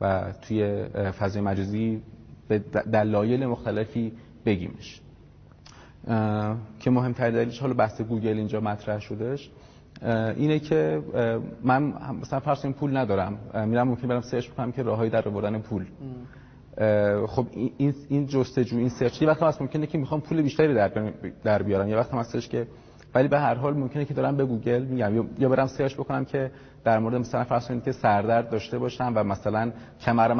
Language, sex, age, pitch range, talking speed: English, male, 30-49, 105-130 Hz, 155 wpm